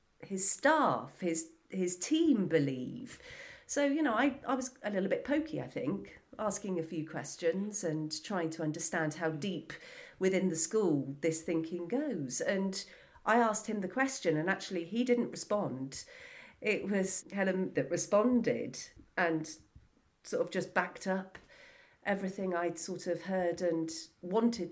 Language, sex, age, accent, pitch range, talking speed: English, female, 40-59, British, 165-215 Hz, 155 wpm